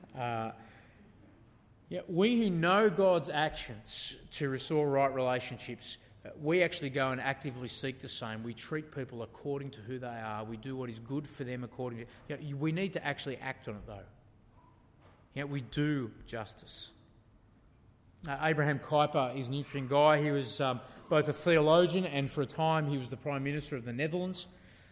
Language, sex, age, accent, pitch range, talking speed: English, male, 30-49, Australian, 115-150 Hz, 180 wpm